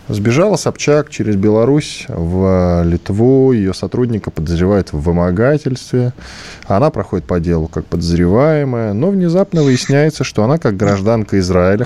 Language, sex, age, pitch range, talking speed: Russian, male, 20-39, 95-145 Hz, 125 wpm